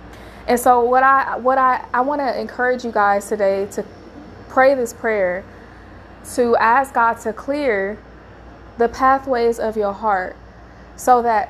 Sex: female